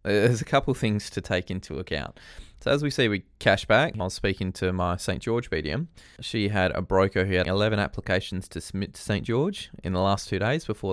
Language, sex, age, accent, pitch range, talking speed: English, male, 20-39, Australian, 90-110 Hz, 235 wpm